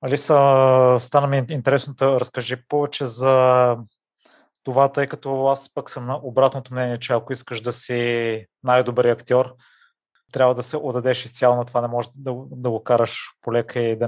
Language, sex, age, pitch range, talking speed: Bulgarian, male, 20-39, 115-125 Hz, 160 wpm